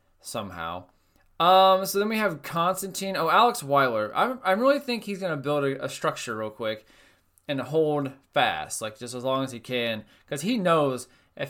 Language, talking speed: English, 195 wpm